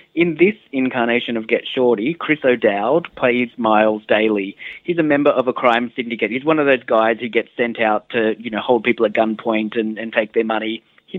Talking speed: 215 wpm